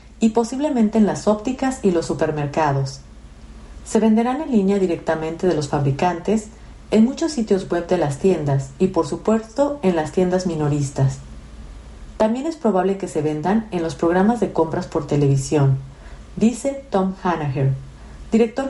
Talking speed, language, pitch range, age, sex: 150 wpm, Spanish, 155-215 Hz, 40-59, female